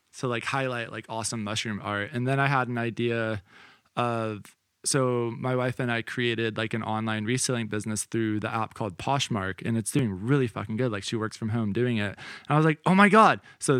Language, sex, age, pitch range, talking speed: English, male, 20-39, 115-145 Hz, 220 wpm